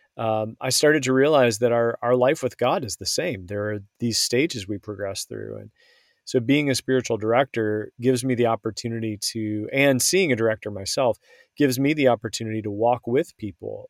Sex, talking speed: male, 195 wpm